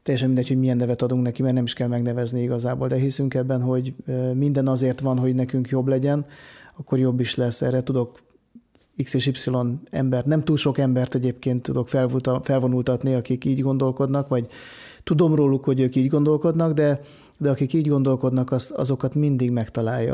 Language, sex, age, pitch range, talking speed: Hungarian, male, 30-49, 120-135 Hz, 175 wpm